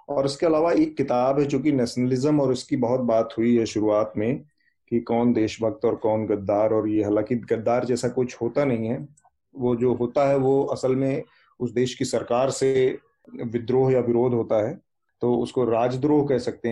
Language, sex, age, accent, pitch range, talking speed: Hindi, male, 30-49, native, 115-145 Hz, 190 wpm